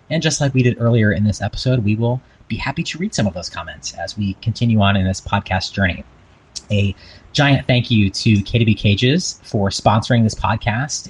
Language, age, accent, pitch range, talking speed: English, 30-49, American, 100-120 Hz, 205 wpm